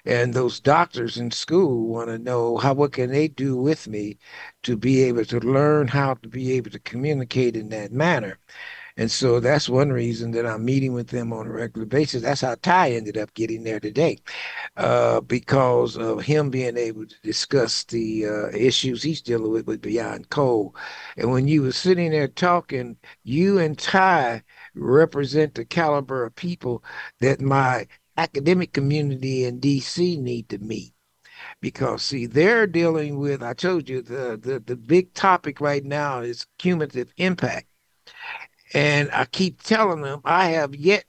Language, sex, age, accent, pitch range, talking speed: English, male, 60-79, American, 120-155 Hz, 170 wpm